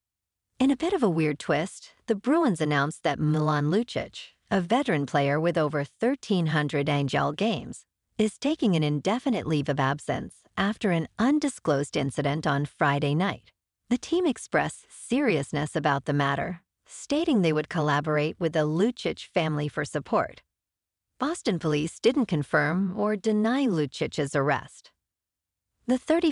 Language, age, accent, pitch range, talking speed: English, 50-69, American, 145-225 Hz, 140 wpm